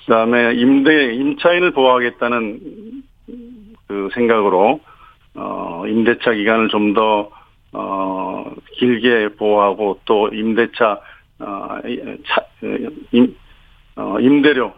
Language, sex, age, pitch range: Korean, male, 50-69, 110-130 Hz